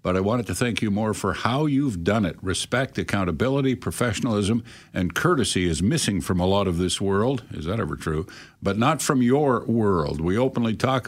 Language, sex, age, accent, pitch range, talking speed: English, male, 50-69, American, 95-125 Hz, 200 wpm